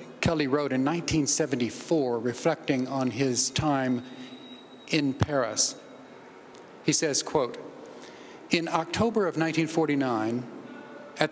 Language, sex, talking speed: English, male, 95 wpm